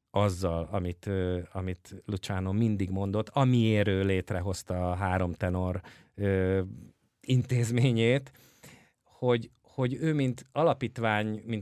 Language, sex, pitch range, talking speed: English, male, 100-125 Hz, 105 wpm